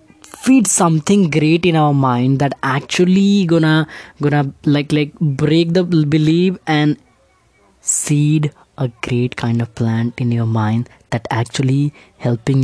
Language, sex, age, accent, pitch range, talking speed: English, female, 20-39, Indian, 135-180 Hz, 135 wpm